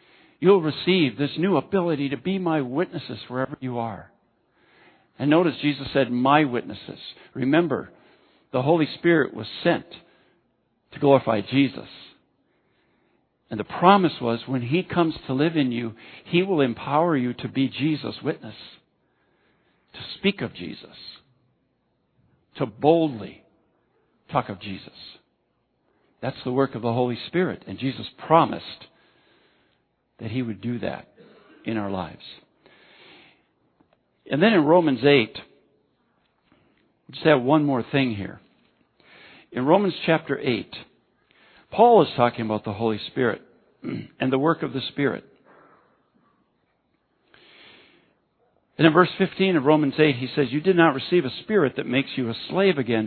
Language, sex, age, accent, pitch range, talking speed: English, male, 60-79, American, 120-165 Hz, 140 wpm